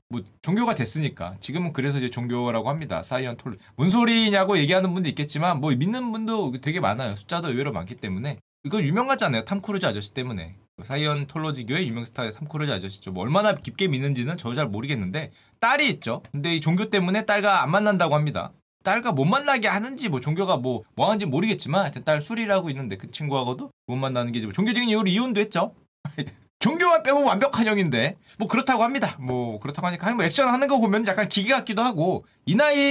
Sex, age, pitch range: male, 20-39, 135-205 Hz